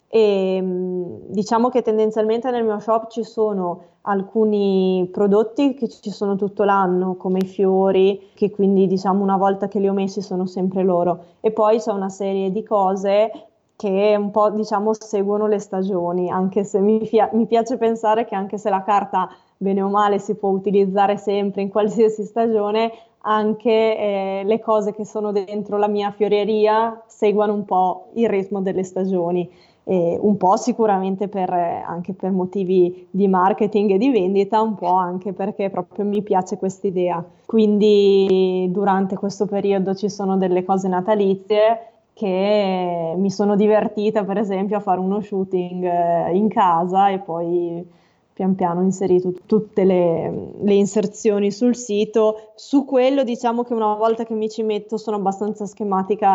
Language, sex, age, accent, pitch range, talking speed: Italian, female, 20-39, native, 190-215 Hz, 160 wpm